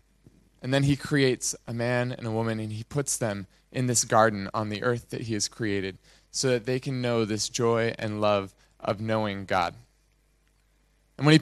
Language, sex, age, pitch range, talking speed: English, male, 20-39, 110-140 Hz, 200 wpm